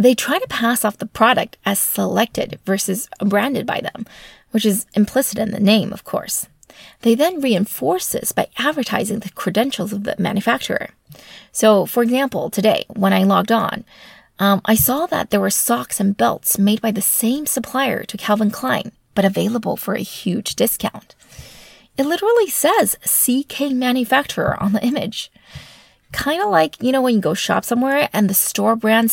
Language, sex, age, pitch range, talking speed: English, female, 30-49, 200-260 Hz, 175 wpm